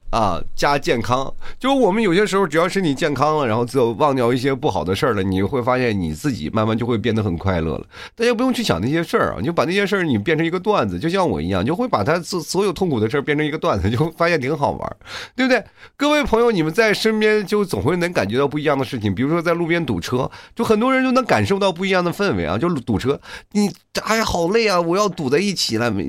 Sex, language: male, Chinese